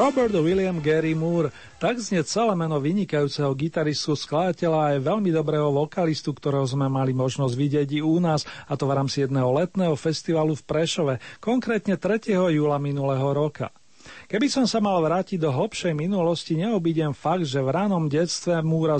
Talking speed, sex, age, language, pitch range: 165 wpm, male, 40-59, Slovak, 145-170 Hz